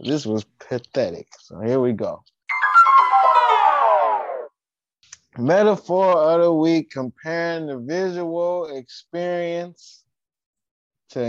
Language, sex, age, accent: English, male, 20-39, American